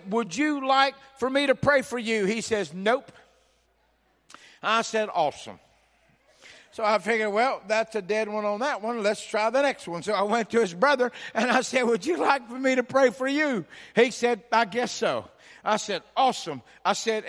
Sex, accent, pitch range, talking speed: male, American, 205-245 Hz, 205 wpm